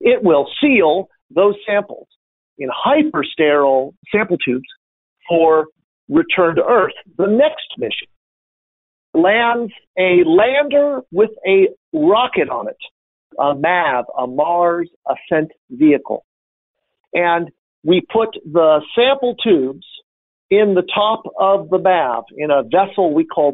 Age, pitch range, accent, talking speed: 50-69, 160-235 Hz, American, 120 wpm